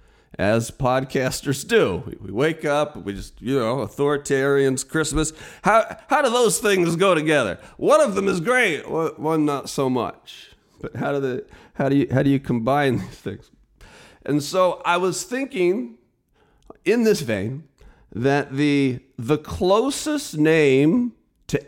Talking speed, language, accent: 155 wpm, English, American